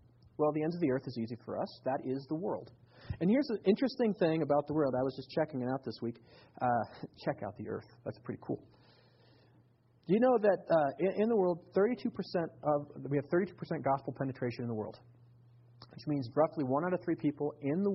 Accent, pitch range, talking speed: American, 120-155 Hz, 220 wpm